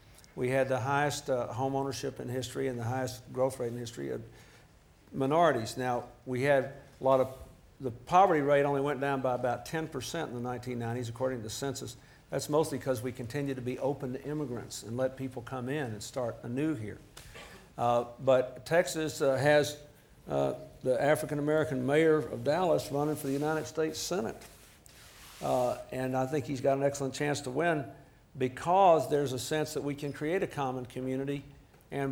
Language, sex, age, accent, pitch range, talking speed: English, male, 50-69, American, 125-145 Hz, 185 wpm